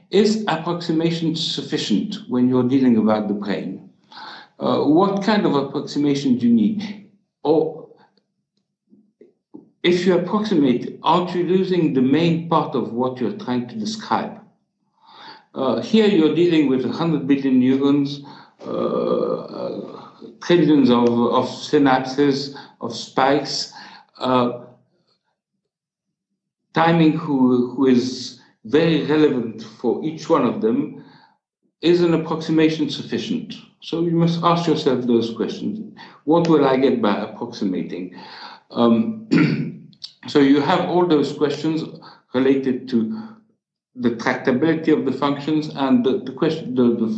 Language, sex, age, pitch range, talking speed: English, male, 60-79, 125-180 Hz, 120 wpm